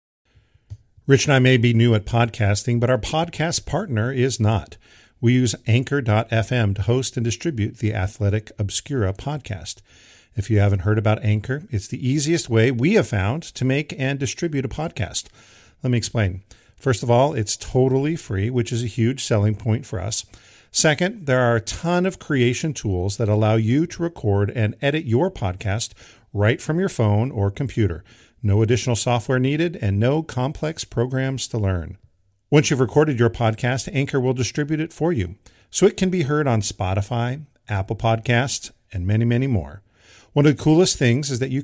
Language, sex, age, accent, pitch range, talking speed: English, male, 50-69, American, 105-135 Hz, 180 wpm